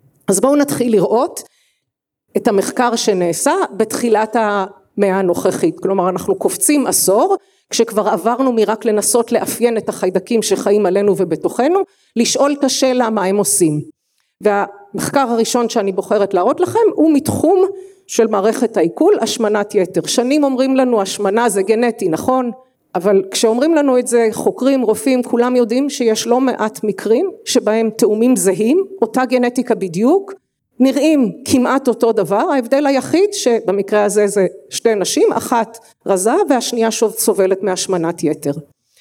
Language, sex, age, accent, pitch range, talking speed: Hebrew, female, 40-59, native, 205-265 Hz, 135 wpm